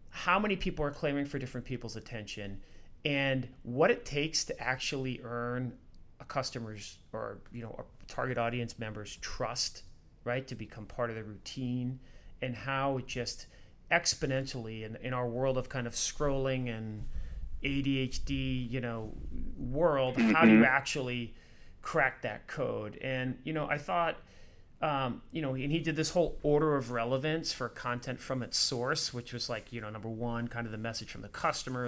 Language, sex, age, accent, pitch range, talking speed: English, male, 30-49, American, 115-135 Hz, 175 wpm